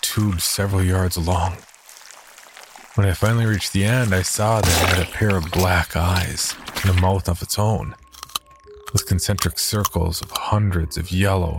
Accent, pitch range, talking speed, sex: American, 85-100 Hz, 170 wpm, male